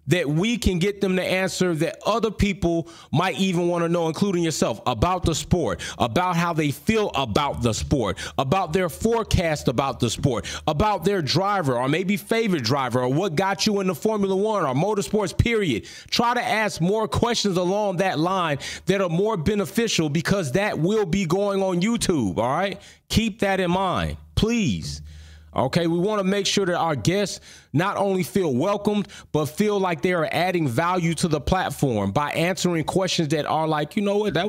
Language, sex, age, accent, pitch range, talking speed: English, male, 30-49, American, 125-190 Hz, 195 wpm